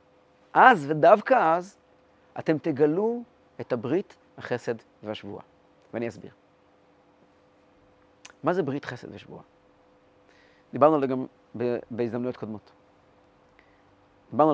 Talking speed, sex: 95 wpm, male